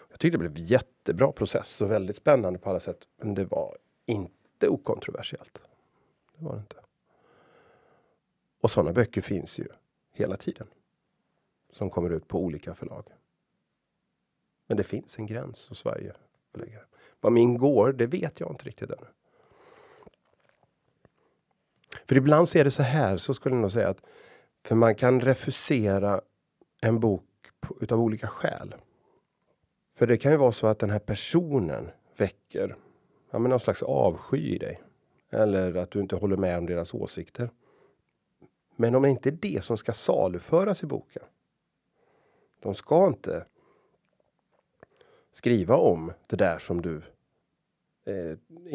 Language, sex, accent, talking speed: Swedish, male, native, 145 wpm